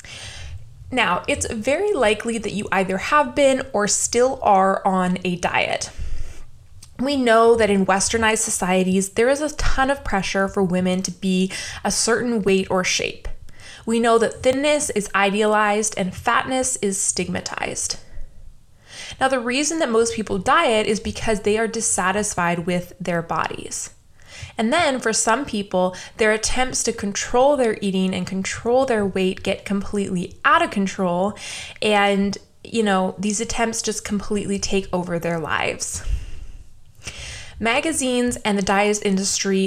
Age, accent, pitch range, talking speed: 20-39, American, 185-230 Hz, 145 wpm